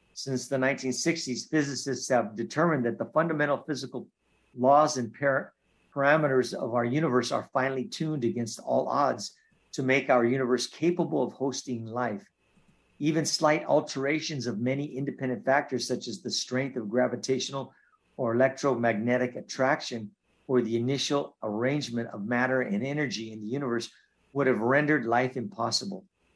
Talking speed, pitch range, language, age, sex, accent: 140 wpm, 120-145 Hz, English, 50-69, male, American